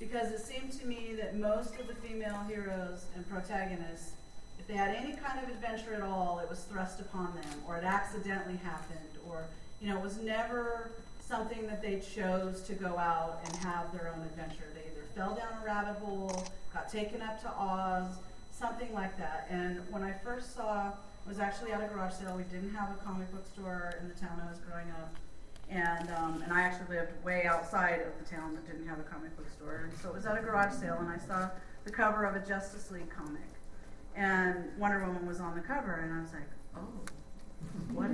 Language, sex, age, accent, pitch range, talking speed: English, female, 40-59, American, 175-210 Hz, 220 wpm